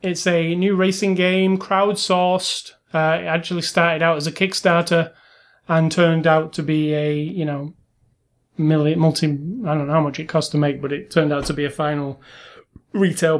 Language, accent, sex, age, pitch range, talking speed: English, British, male, 30-49, 155-185 Hz, 185 wpm